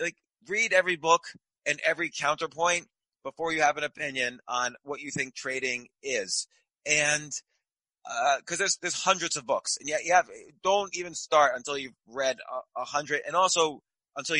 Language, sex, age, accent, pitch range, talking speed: English, male, 30-49, American, 130-165 Hz, 165 wpm